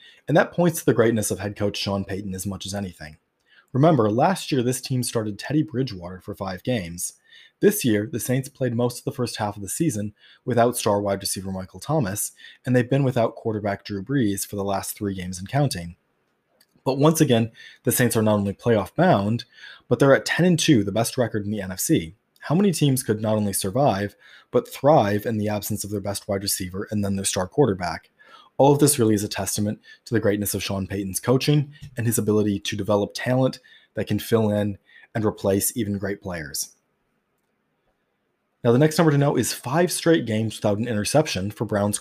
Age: 20-39